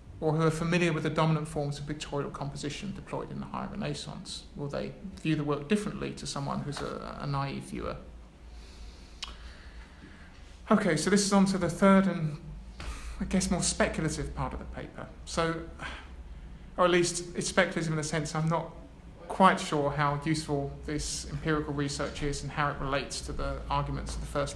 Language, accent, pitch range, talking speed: English, British, 130-175 Hz, 185 wpm